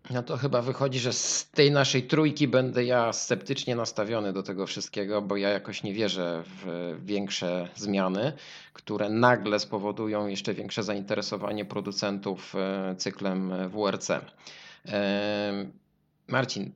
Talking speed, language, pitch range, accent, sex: 120 wpm, Polish, 100-115 Hz, native, male